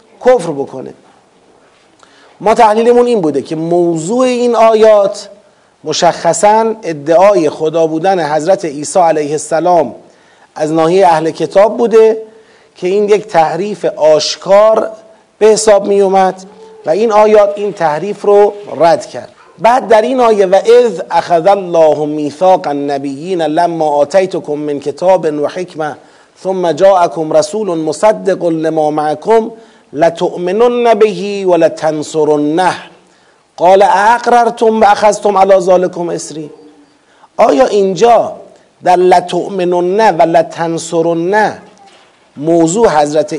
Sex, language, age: male, Persian, 40-59